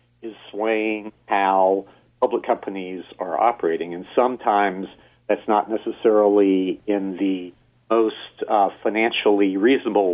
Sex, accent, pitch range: male, American, 95-110 Hz